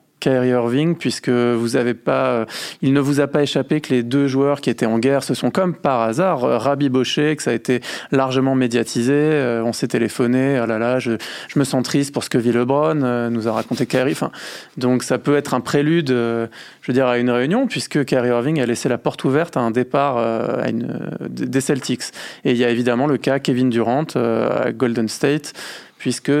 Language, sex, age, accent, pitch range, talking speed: French, male, 20-39, French, 120-145 Hz, 225 wpm